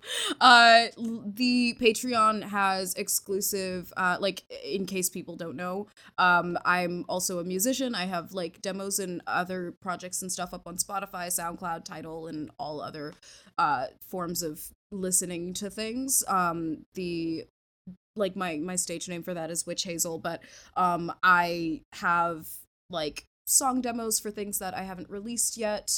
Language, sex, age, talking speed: English, female, 20-39, 150 wpm